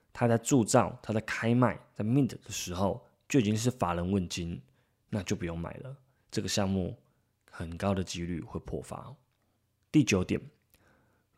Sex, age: male, 20-39